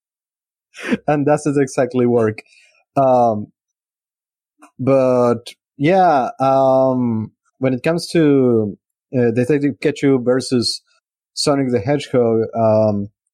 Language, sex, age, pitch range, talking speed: English, male, 30-49, 125-170 Hz, 90 wpm